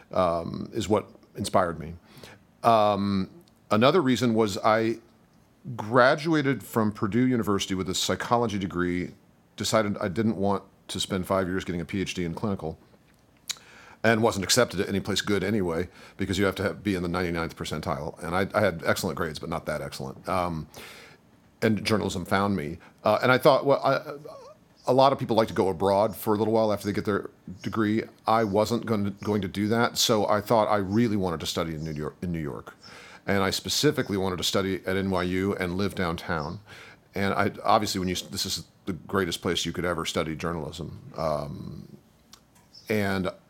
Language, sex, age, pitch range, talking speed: English, male, 40-59, 90-110 Hz, 190 wpm